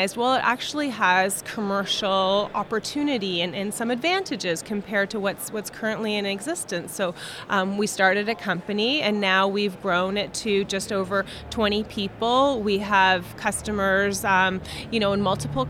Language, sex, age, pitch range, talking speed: English, female, 30-49, 195-235 Hz, 155 wpm